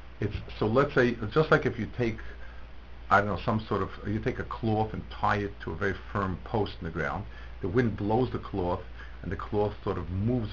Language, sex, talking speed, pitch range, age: English, male, 235 wpm, 70-115 Hz, 60-79